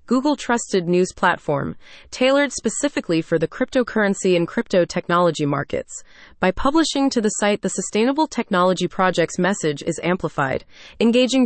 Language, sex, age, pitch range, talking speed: English, female, 30-49, 170-240 Hz, 130 wpm